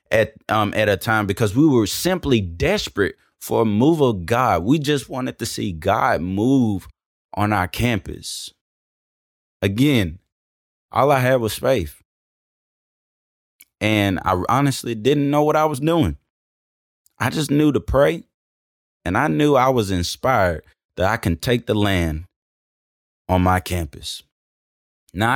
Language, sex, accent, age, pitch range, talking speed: English, male, American, 20-39, 90-140 Hz, 145 wpm